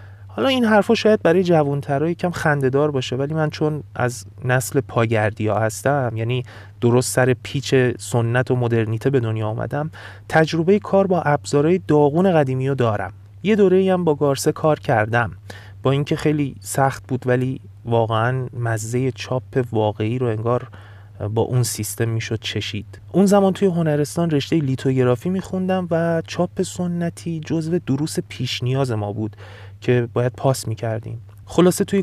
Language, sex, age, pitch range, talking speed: Persian, male, 30-49, 110-155 Hz, 155 wpm